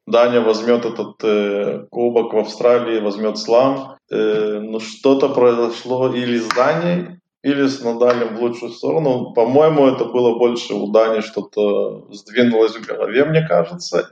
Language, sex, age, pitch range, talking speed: Hebrew, male, 20-39, 105-120 Hz, 155 wpm